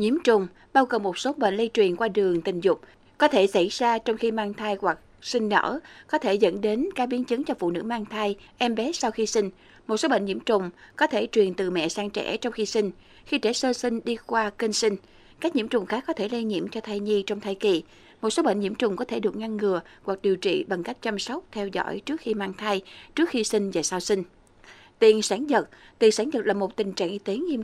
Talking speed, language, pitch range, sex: 260 wpm, Vietnamese, 195-245 Hz, female